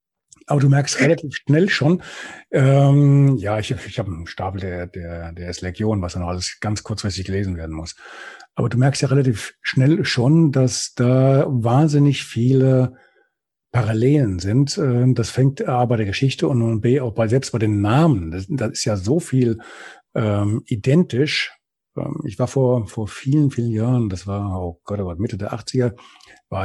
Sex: male